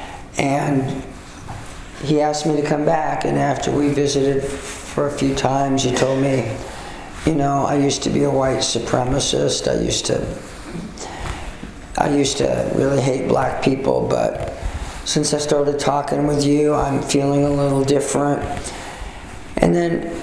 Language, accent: English, American